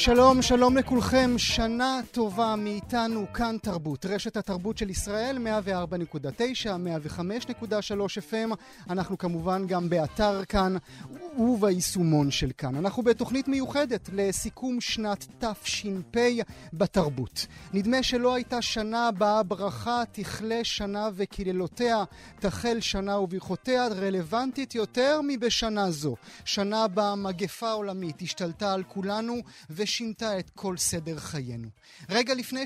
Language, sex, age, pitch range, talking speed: Hebrew, male, 30-49, 190-235 Hz, 110 wpm